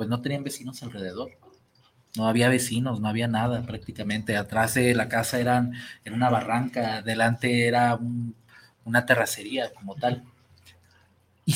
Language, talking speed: Spanish, 135 wpm